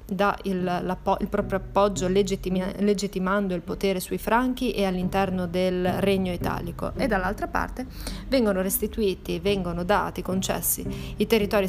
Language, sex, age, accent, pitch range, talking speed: Italian, female, 30-49, native, 185-215 Hz, 135 wpm